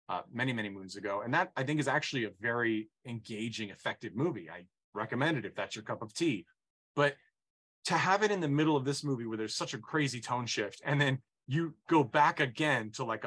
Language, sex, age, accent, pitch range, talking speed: English, male, 30-49, American, 105-135 Hz, 225 wpm